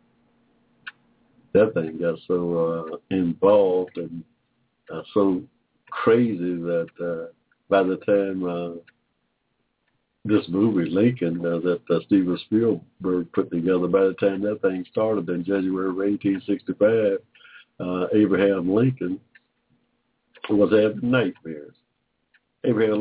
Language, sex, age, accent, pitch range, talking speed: English, male, 60-79, American, 95-140 Hz, 110 wpm